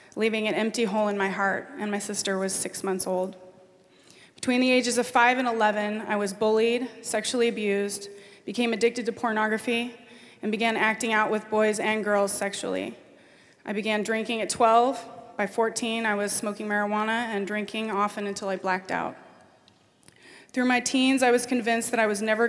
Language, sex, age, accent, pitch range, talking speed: English, female, 20-39, American, 205-235 Hz, 180 wpm